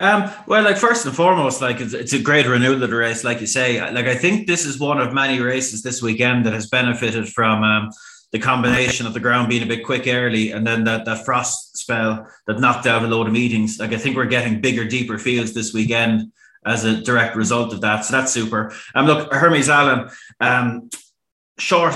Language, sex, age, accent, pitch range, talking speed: English, male, 20-39, Irish, 110-125 Hz, 225 wpm